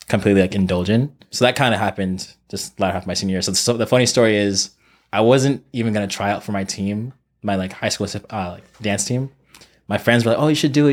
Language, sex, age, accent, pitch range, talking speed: English, male, 20-39, American, 95-110 Hz, 270 wpm